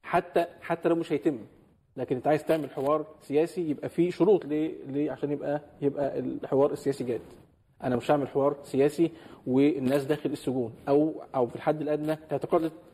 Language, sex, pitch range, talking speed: Arabic, male, 135-160 Hz, 165 wpm